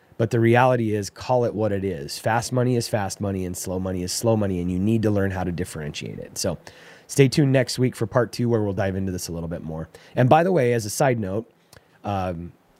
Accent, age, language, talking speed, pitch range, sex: American, 30-49, English, 260 wpm, 100-120 Hz, male